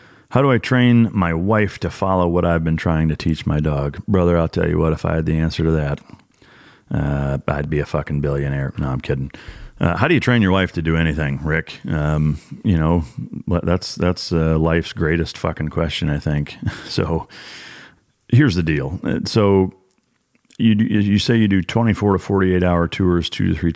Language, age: English, 30-49